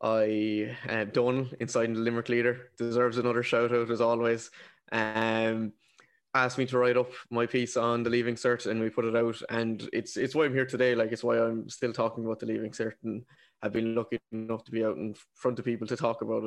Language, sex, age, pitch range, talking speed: English, male, 20-39, 115-125 Hz, 225 wpm